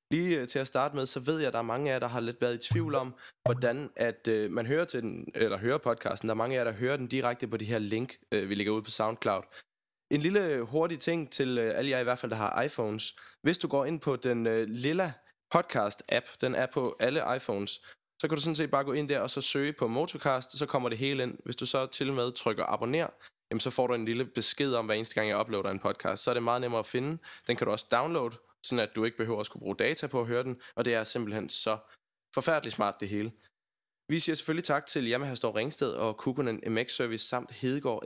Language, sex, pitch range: Danish, male, 115-140 Hz